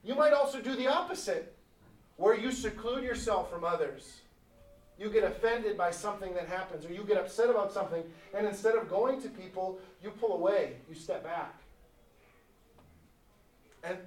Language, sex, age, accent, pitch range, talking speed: English, male, 40-59, American, 180-240 Hz, 160 wpm